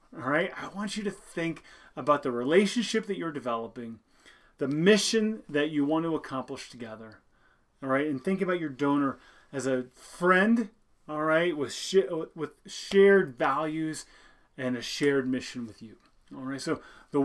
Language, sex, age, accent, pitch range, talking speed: English, male, 30-49, American, 135-195 Hz, 165 wpm